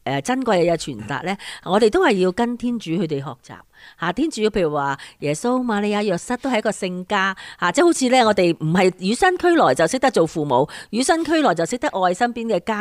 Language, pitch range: Chinese, 175-240 Hz